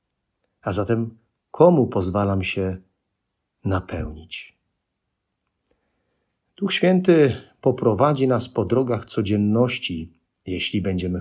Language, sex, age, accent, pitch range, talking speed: Polish, male, 40-59, native, 100-130 Hz, 80 wpm